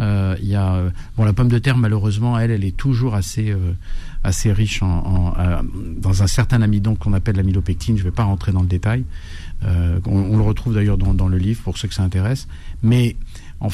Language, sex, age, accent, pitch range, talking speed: French, male, 50-69, French, 95-115 Hz, 225 wpm